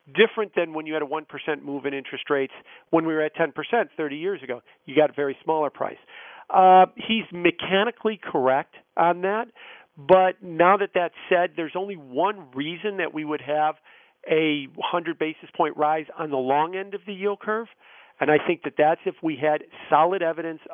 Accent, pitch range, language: American, 155-210 Hz, English